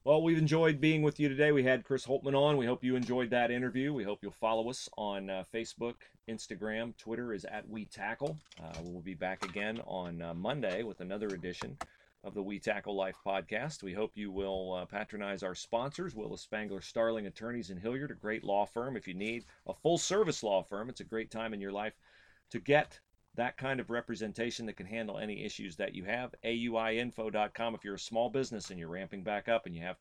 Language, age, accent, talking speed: English, 40-59, American, 220 wpm